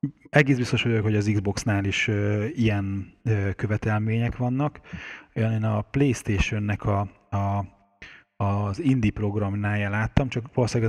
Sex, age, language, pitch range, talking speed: male, 30-49, Hungarian, 95-110 Hz, 110 wpm